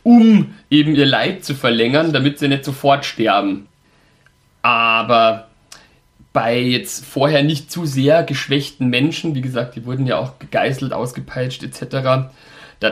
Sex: male